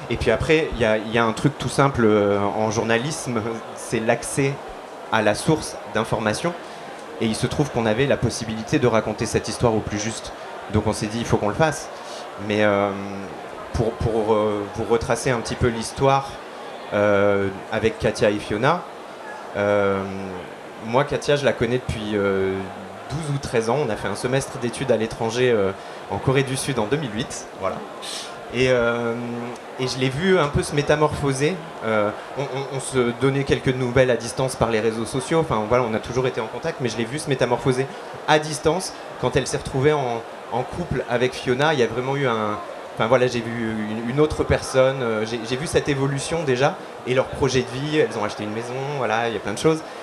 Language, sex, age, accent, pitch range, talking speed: French, male, 30-49, French, 110-135 Hz, 210 wpm